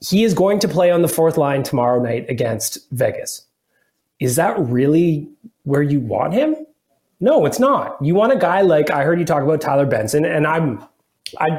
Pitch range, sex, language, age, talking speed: 130-170 Hz, male, English, 30-49, 195 wpm